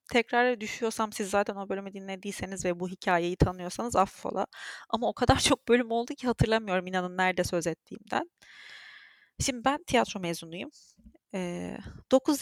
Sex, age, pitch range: female, 30-49, 180-235 Hz